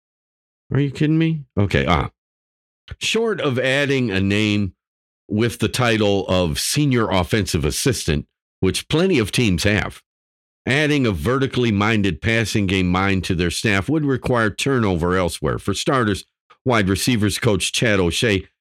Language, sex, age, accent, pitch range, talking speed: English, male, 50-69, American, 85-120 Hz, 145 wpm